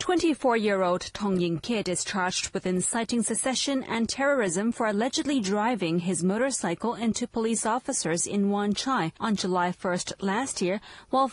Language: English